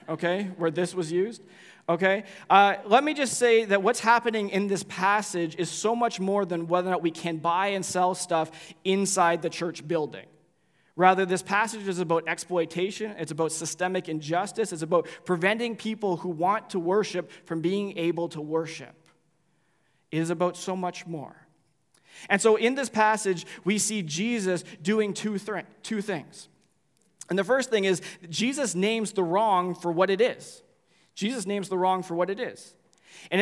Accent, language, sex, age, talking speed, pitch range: American, English, male, 20-39, 175 wpm, 165-205 Hz